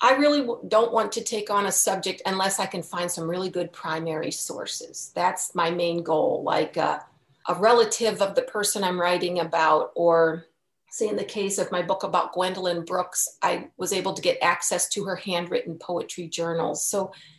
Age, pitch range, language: 40-59, 180-235 Hz, English